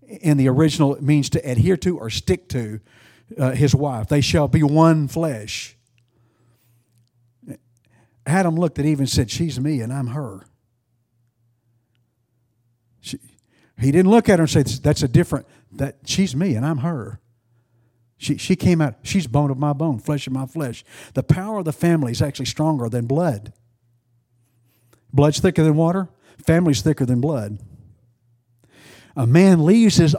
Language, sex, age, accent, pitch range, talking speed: English, male, 50-69, American, 120-150 Hz, 160 wpm